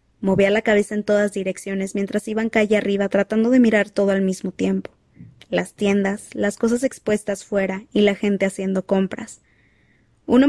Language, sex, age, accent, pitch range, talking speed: Spanish, female, 20-39, Mexican, 195-220 Hz, 165 wpm